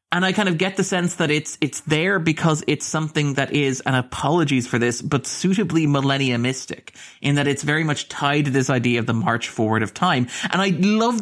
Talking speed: 225 wpm